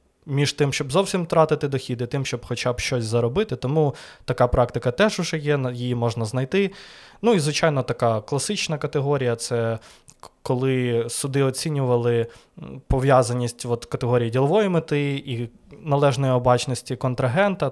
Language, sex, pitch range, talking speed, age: Ukrainian, male, 120-140 Hz, 140 wpm, 20-39